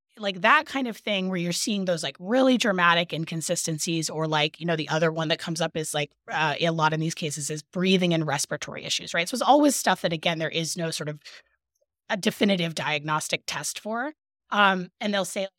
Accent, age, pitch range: American, 20-39, 160-200 Hz